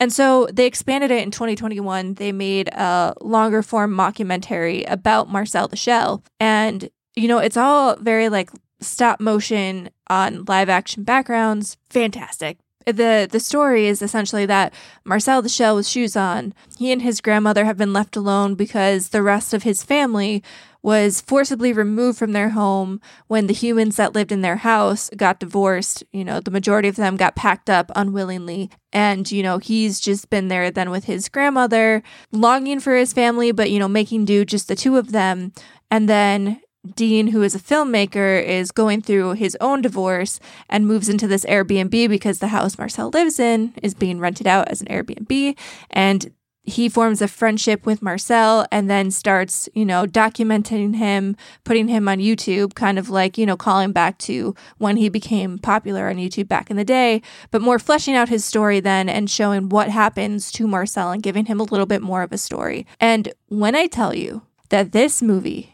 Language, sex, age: English, female, 20-39